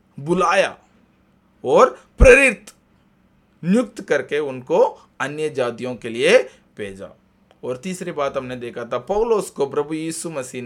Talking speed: 125 wpm